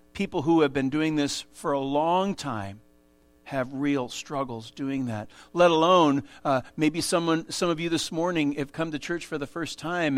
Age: 50-69